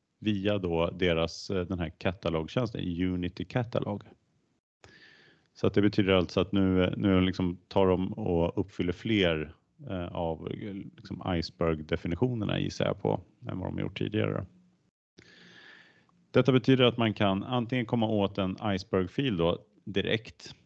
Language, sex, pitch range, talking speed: Swedish, male, 85-105 Hz, 130 wpm